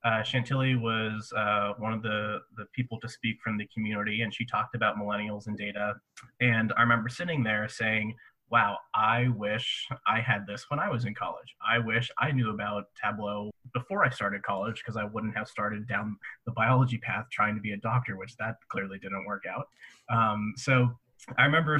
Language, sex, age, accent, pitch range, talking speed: English, male, 20-39, American, 110-125 Hz, 200 wpm